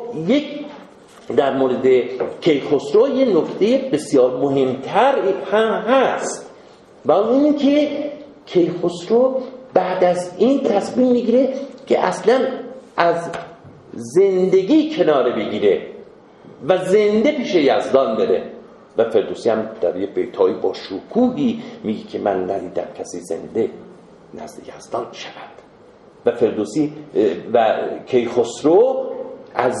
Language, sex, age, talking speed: Persian, male, 50-69, 105 wpm